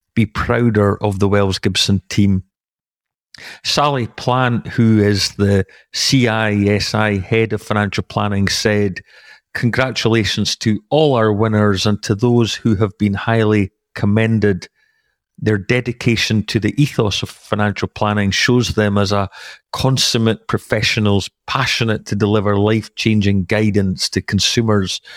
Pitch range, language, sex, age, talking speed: 100-115 Hz, English, male, 40-59, 125 wpm